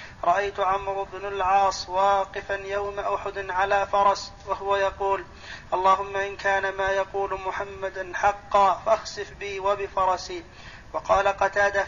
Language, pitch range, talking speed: Arabic, 195-200 Hz, 115 wpm